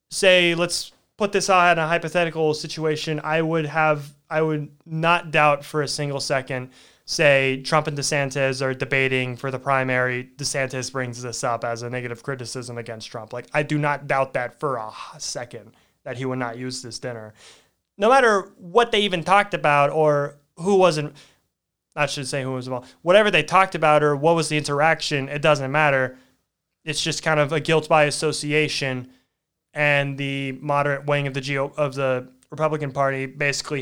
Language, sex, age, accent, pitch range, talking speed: English, male, 20-39, American, 135-170 Hz, 185 wpm